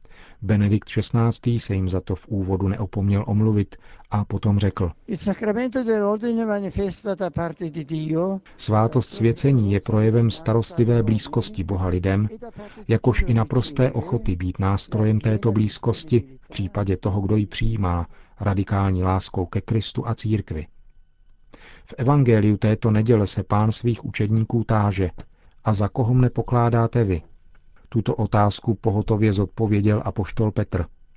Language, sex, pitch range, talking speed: Czech, male, 100-120 Hz, 120 wpm